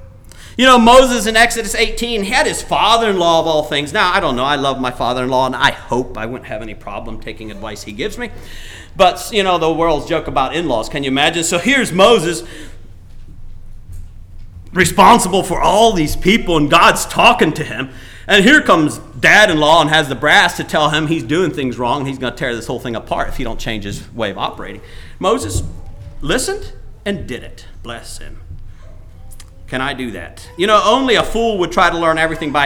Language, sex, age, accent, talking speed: English, male, 40-59, American, 205 wpm